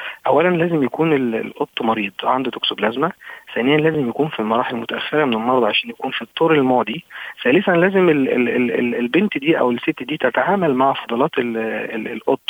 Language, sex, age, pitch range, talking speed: Arabic, male, 40-59, 115-150 Hz, 155 wpm